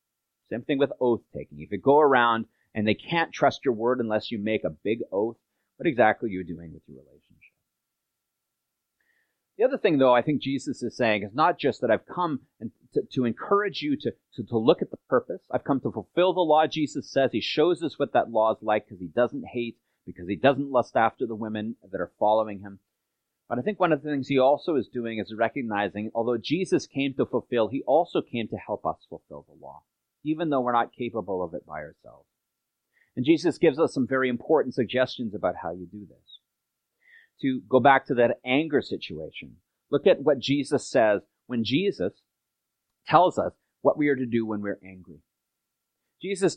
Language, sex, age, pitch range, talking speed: English, male, 30-49, 110-145 Hz, 205 wpm